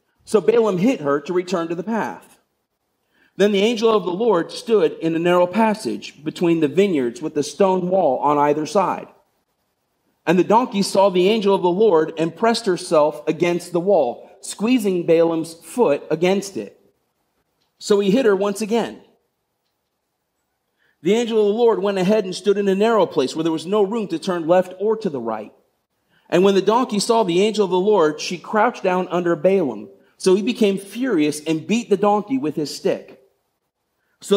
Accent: American